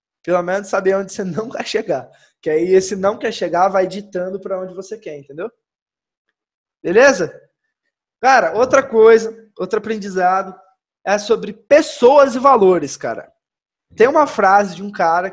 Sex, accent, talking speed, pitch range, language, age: male, Brazilian, 155 wpm, 170-235 Hz, Portuguese, 20-39